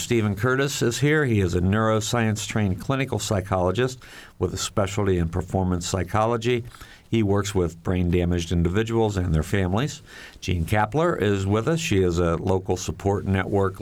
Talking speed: 150 wpm